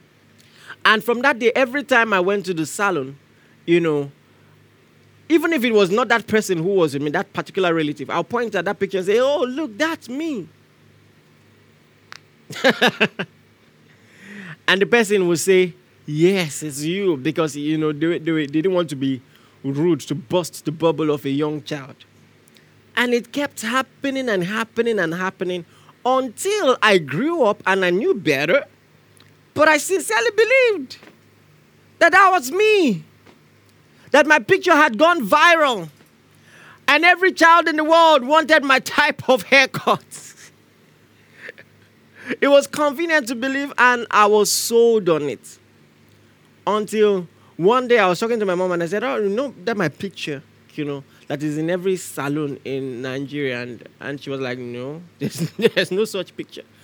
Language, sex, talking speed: English, male, 165 wpm